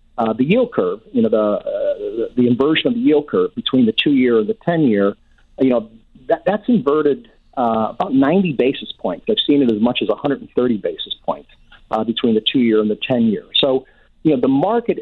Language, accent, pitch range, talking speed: English, American, 115-165 Hz, 205 wpm